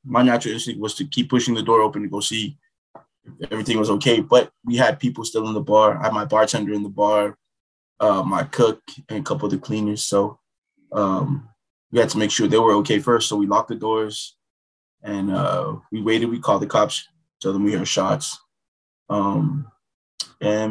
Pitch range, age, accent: 105-130 Hz, 20-39, American